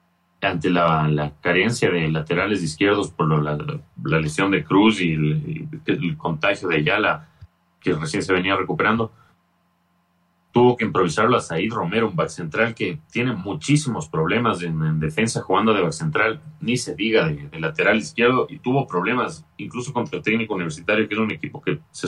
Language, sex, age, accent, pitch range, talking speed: Spanish, male, 40-59, Mexican, 90-130 Hz, 190 wpm